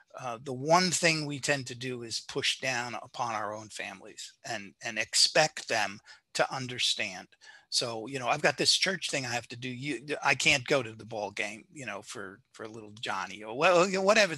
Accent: American